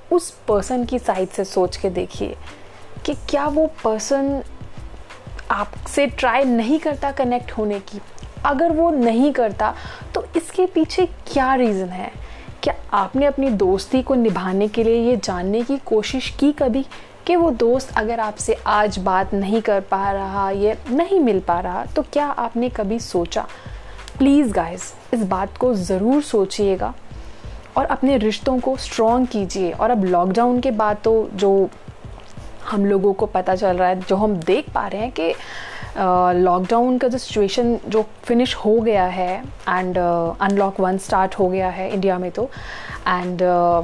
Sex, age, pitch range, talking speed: female, 30-49, 190-255 Hz, 165 wpm